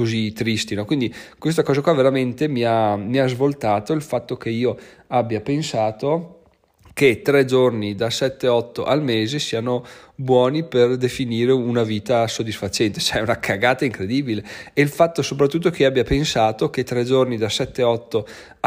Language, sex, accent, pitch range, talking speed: Italian, male, native, 115-140 Hz, 160 wpm